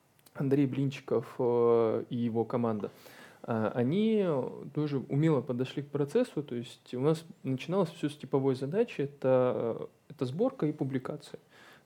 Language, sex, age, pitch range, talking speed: Russian, male, 20-39, 125-155 Hz, 125 wpm